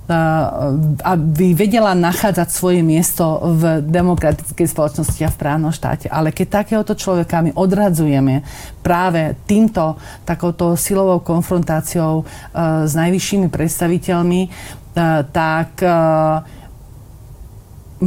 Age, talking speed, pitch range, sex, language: 40-59, 100 wpm, 155-180 Hz, female, Slovak